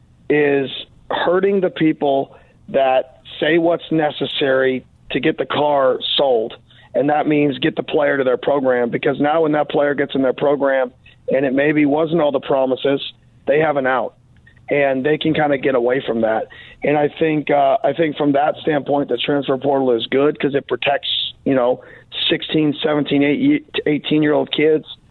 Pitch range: 135-155 Hz